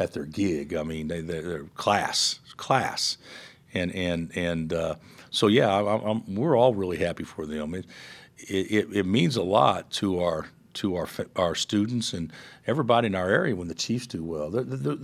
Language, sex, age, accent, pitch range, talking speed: English, male, 50-69, American, 85-105 Hz, 190 wpm